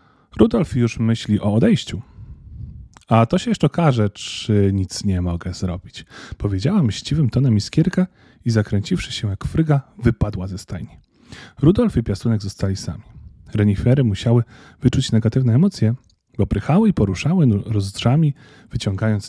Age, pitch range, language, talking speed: 30-49, 100-130 Hz, Polish, 135 wpm